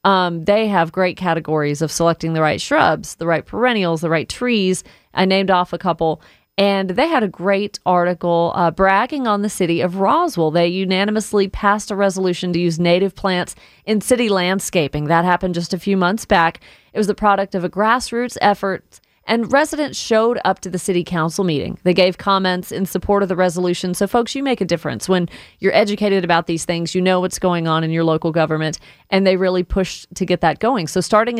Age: 30-49